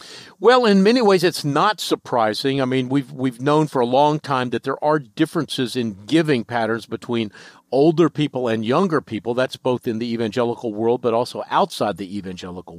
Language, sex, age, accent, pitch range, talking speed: English, male, 50-69, American, 130-175 Hz, 190 wpm